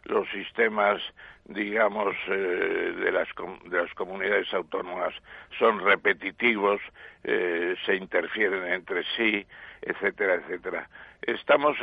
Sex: male